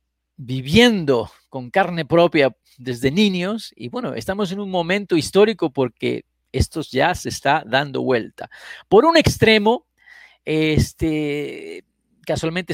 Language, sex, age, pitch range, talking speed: Spanish, male, 40-59, 130-205 Hz, 120 wpm